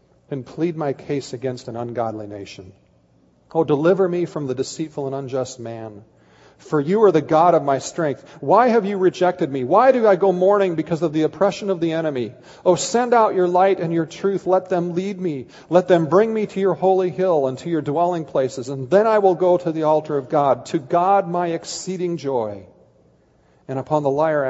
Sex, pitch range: male, 115-165 Hz